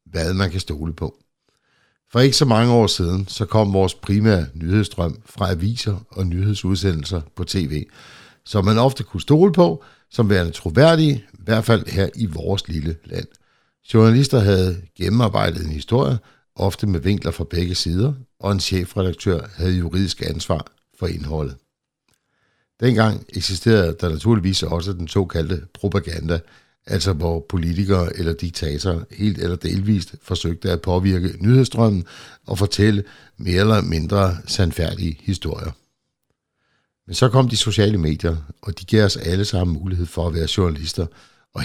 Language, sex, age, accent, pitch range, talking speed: Danish, male, 60-79, native, 85-110 Hz, 150 wpm